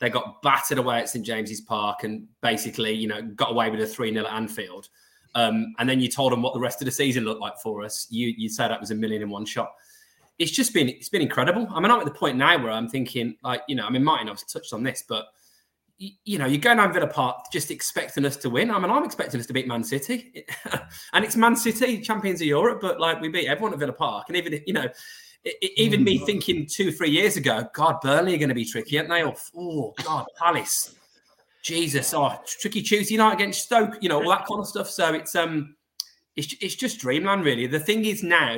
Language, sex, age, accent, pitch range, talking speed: English, male, 20-39, British, 125-195 Hz, 255 wpm